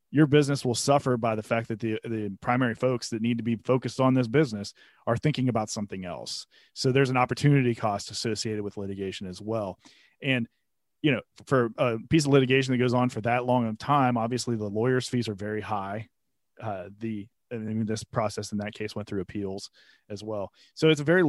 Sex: male